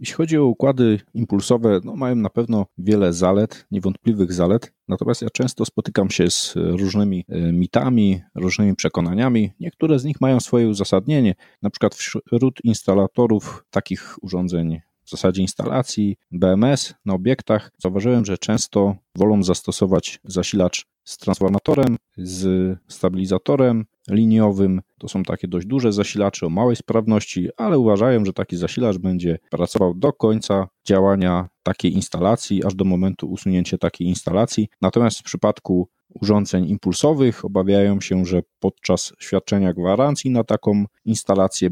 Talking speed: 130 wpm